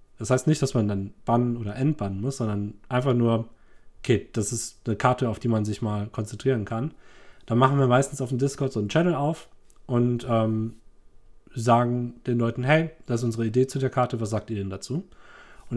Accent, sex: German, male